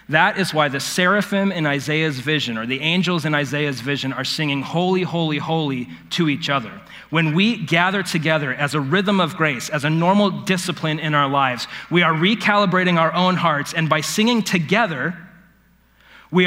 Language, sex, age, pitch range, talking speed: English, male, 30-49, 145-185 Hz, 180 wpm